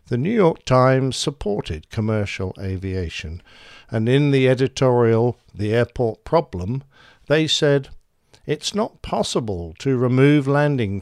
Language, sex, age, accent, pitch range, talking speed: English, male, 60-79, British, 100-130 Hz, 120 wpm